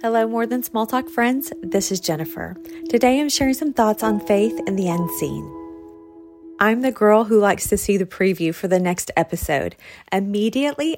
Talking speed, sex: 180 wpm, female